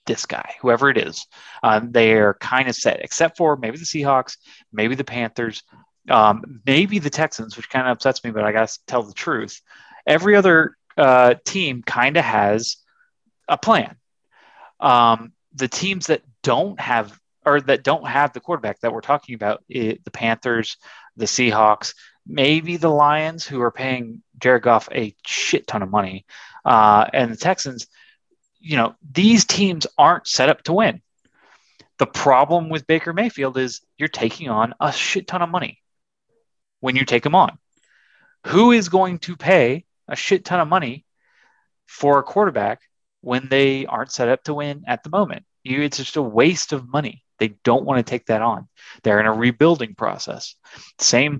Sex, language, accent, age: male, English, American, 30-49